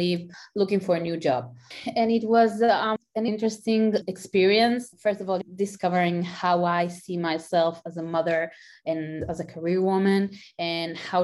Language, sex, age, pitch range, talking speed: English, female, 20-39, 170-200 Hz, 160 wpm